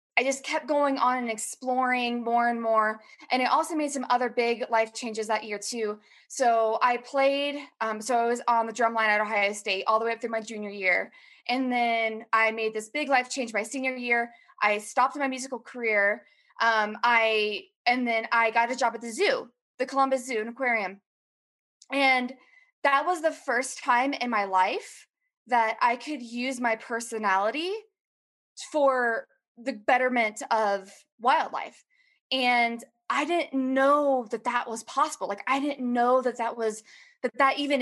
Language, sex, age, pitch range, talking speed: English, female, 20-39, 220-275 Hz, 180 wpm